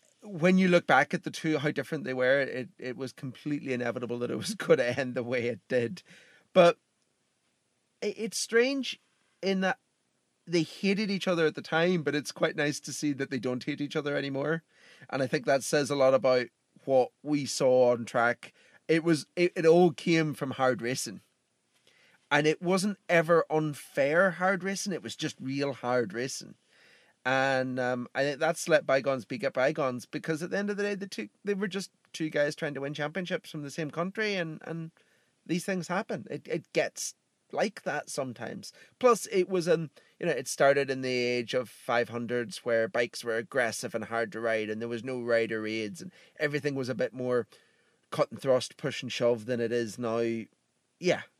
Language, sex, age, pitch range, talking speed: English, male, 30-49, 125-170 Hz, 200 wpm